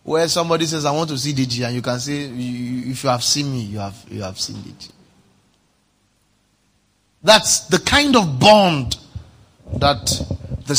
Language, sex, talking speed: English, male, 165 wpm